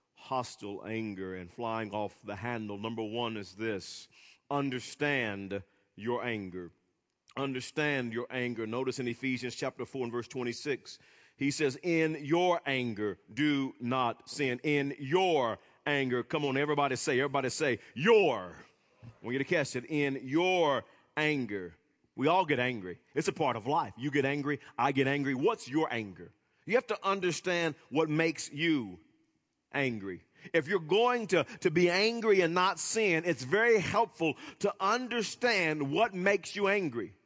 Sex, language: male, English